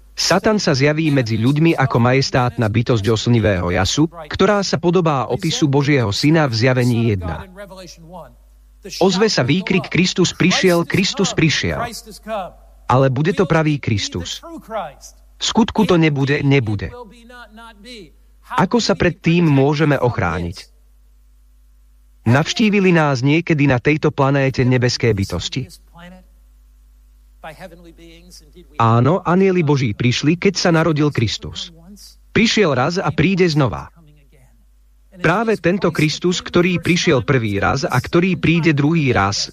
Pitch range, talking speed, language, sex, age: 125-180 Hz, 110 wpm, Slovak, male, 40-59